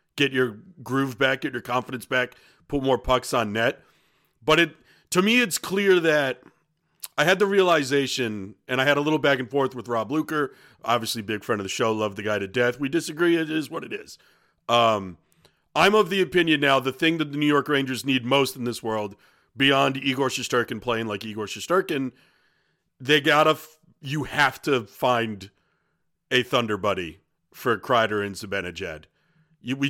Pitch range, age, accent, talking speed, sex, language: 115-155 Hz, 40-59, American, 190 wpm, male, English